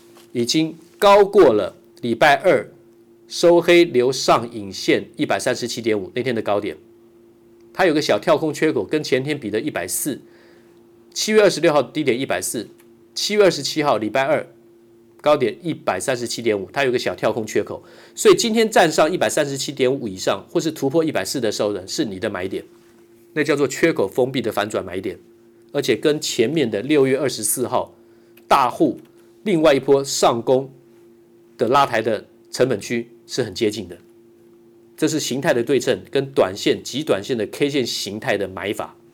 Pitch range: 115-140 Hz